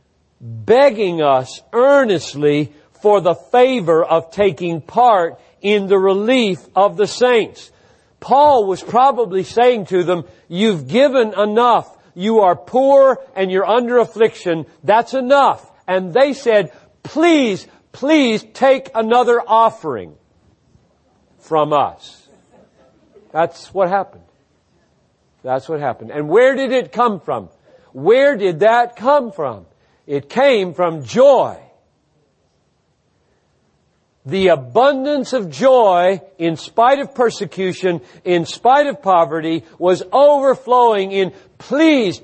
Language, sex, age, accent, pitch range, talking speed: English, male, 50-69, American, 165-250 Hz, 115 wpm